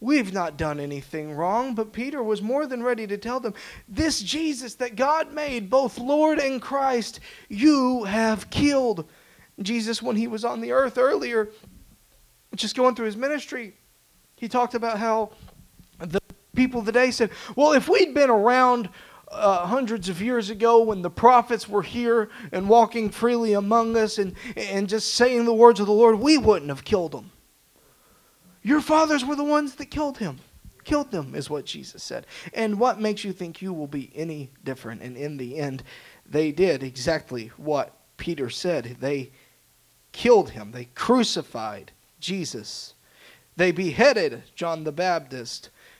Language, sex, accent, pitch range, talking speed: English, male, American, 165-245 Hz, 165 wpm